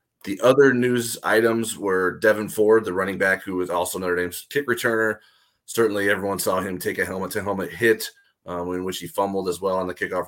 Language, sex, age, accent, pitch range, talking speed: English, male, 30-49, American, 85-110 Hz, 215 wpm